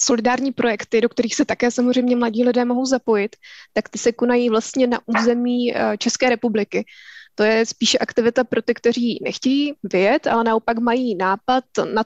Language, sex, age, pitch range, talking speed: Czech, female, 20-39, 220-245 Hz, 170 wpm